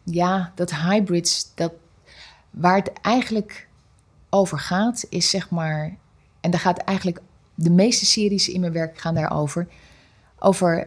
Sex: female